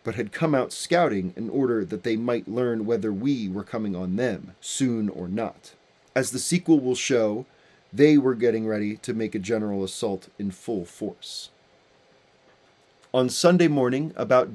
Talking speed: 170 wpm